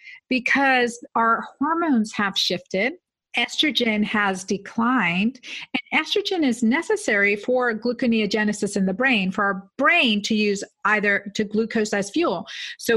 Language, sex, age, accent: English, female, 50-69, American